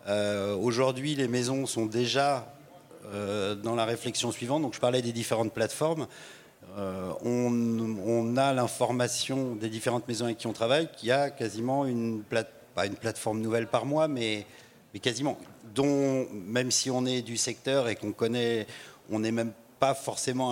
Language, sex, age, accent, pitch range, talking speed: French, male, 40-59, French, 115-135 Hz, 175 wpm